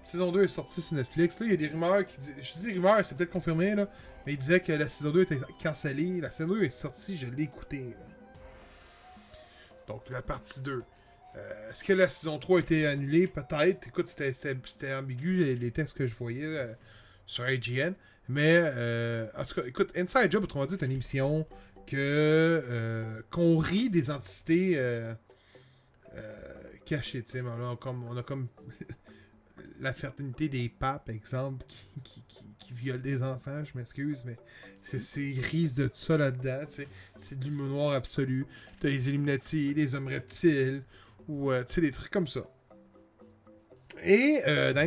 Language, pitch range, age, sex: French, 125-155 Hz, 20-39, male